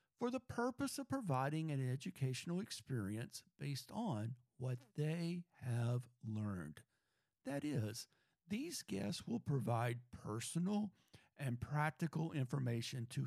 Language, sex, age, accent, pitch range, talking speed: English, male, 50-69, American, 125-170 Hz, 115 wpm